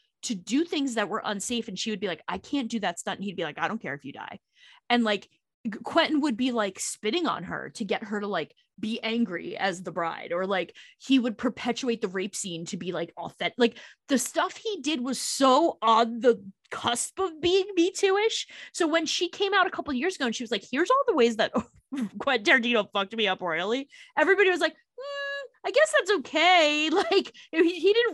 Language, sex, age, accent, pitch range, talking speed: English, female, 20-39, American, 210-330 Hz, 230 wpm